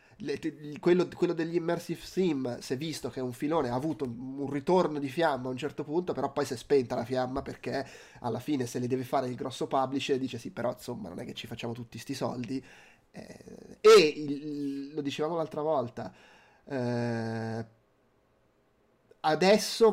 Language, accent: Italian, native